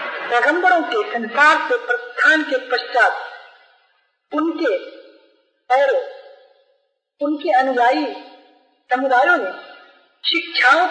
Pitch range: 265-350 Hz